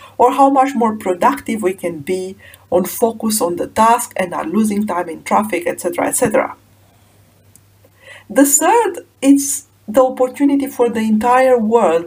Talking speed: 150 wpm